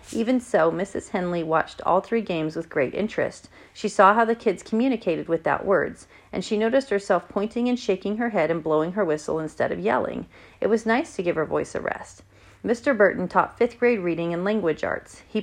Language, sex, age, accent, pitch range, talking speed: English, female, 40-59, American, 170-225 Hz, 210 wpm